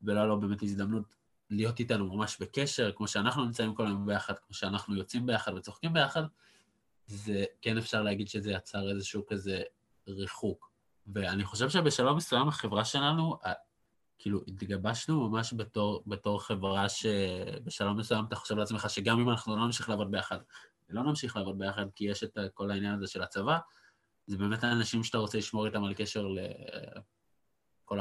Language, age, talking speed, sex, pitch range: Hebrew, 20-39, 160 wpm, male, 100-115 Hz